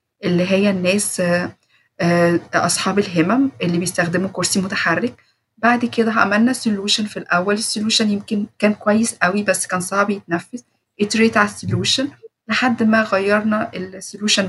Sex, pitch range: female, 180-230 Hz